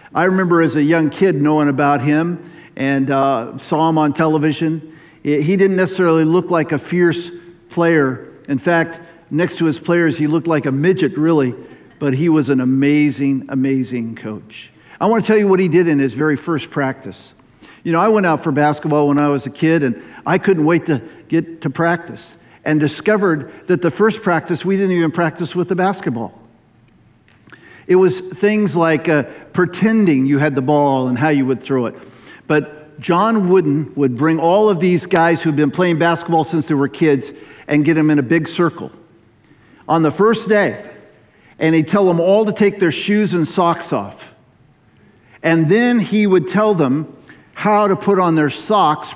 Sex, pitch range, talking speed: male, 145-180 Hz, 190 wpm